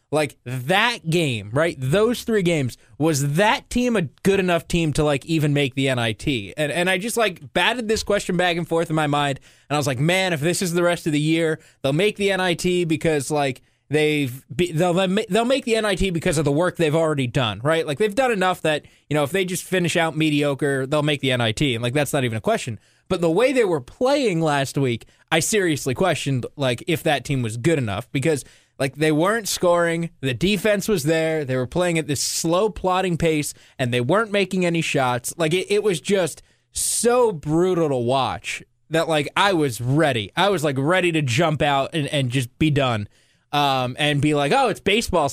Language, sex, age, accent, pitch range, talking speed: English, male, 20-39, American, 140-180 Hz, 220 wpm